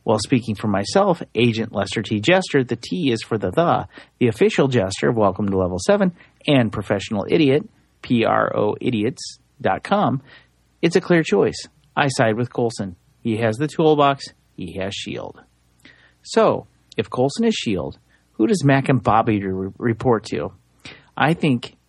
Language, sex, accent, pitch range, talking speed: English, male, American, 105-140 Hz, 155 wpm